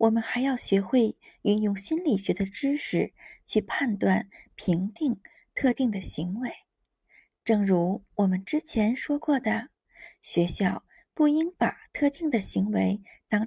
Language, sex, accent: Chinese, female, native